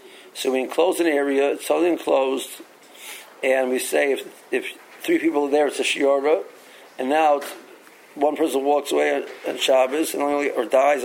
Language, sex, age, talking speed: English, male, 50-69, 180 wpm